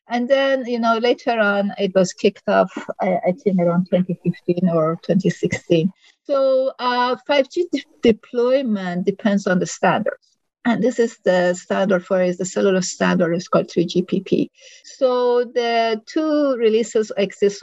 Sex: female